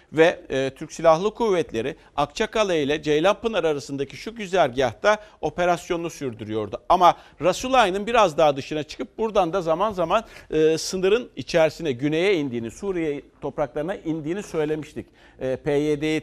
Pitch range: 140-205 Hz